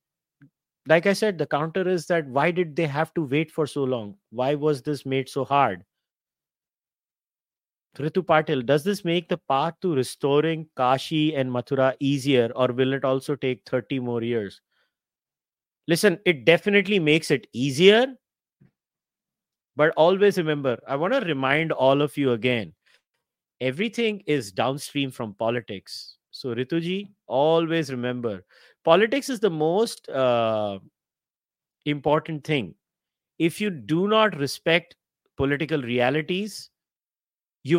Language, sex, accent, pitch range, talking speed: English, male, Indian, 130-175 Hz, 130 wpm